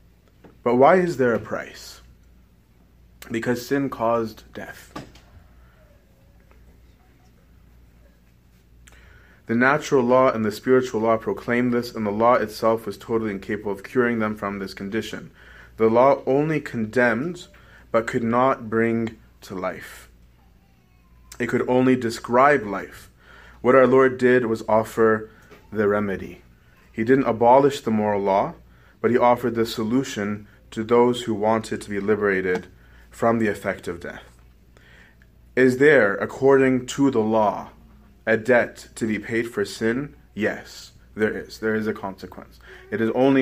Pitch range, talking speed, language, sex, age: 95-120 Hz, 140 wpm, English, male, 30-49